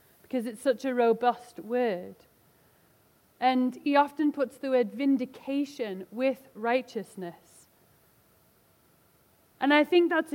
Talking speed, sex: 110 wpm, female